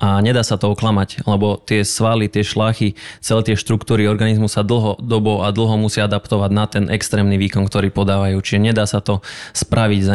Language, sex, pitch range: Slovak, male, 105-115 Hz